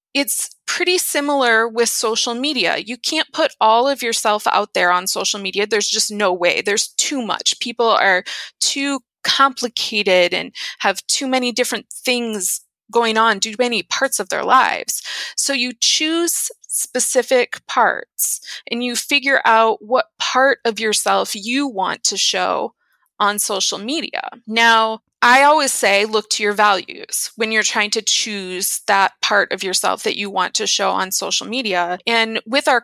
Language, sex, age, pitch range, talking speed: English, female, 20-39, 210-260 Hz, 165 wpm